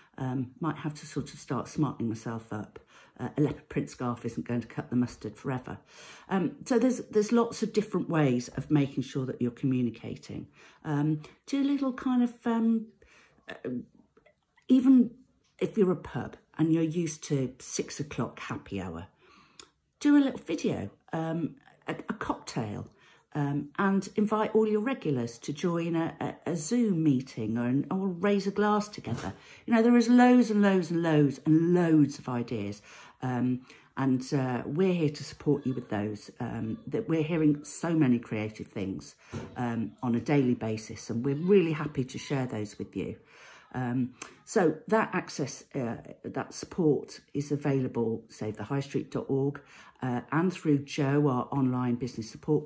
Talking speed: 170 wpm